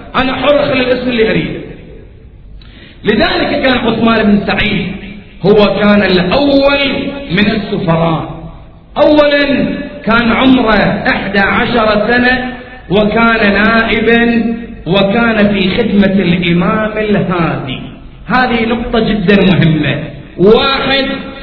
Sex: male